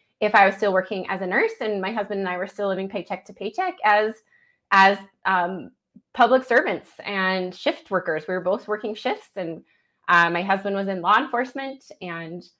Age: 20-39